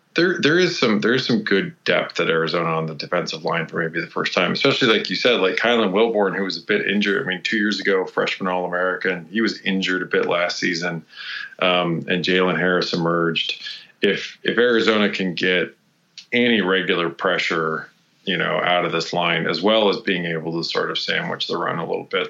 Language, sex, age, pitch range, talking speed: English, male, 20-39, 85-95 Hz, 215 wpm